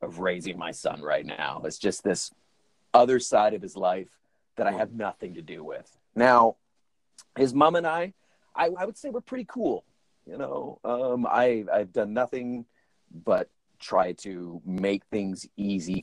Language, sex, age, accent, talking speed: English, male, 30-49, American, 170 wpm